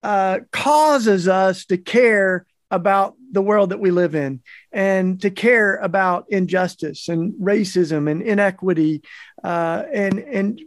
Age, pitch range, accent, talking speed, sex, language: 50-69, 180-220 Hz, American, 135 wpm, male, English